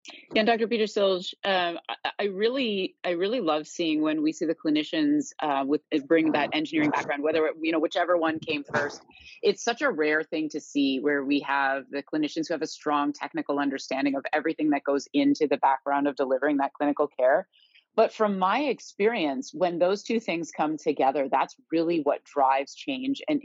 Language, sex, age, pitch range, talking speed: English, female, 30-49, 145-195 Hz, 195 wpm